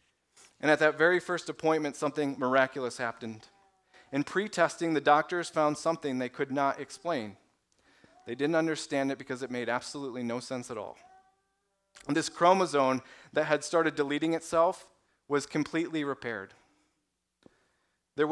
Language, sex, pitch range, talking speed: English, male, 135-165 Hz, 140 wpm